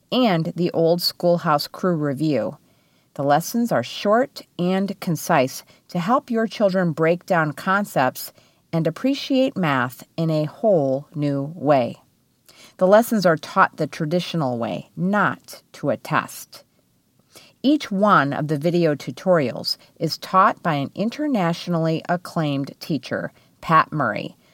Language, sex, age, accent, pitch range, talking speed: English, female, 40-59, American, 150-210 Hz, 130 wpm